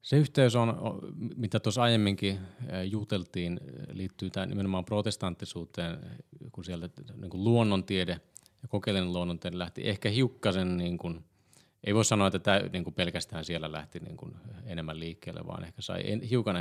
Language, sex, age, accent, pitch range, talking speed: Finnish, male, 30-49, native, 90-110 Hz, 135 wpm